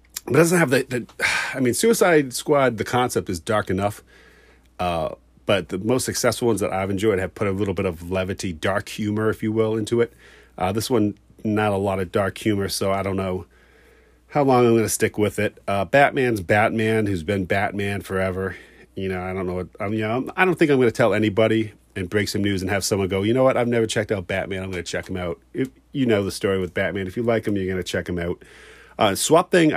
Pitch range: 95-110 Hz